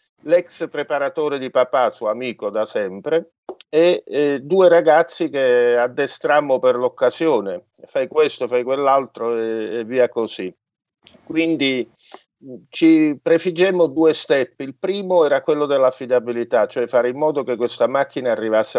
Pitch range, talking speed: 120-165 Hz, 135 wpm